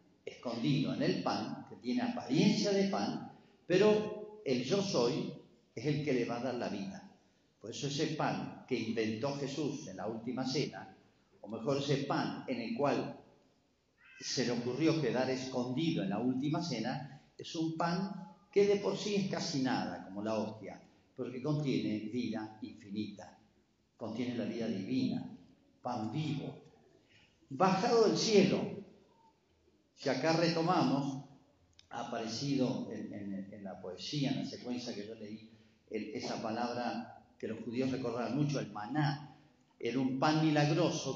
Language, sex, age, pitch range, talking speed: Spanish, male, 50-69, 125-185 Hz, 150 wpm